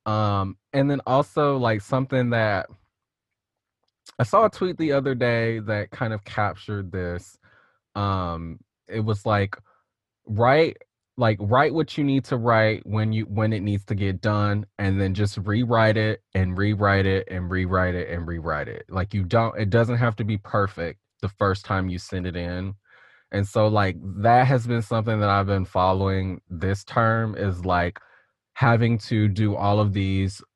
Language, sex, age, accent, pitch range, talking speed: English, male, 20-39, American, 100-120 Hz, 175 wpm